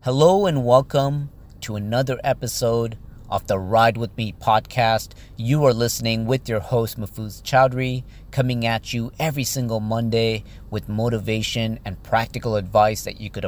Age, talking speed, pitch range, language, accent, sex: 40-59, 150 wpm, 105-120 Hz, English, American, male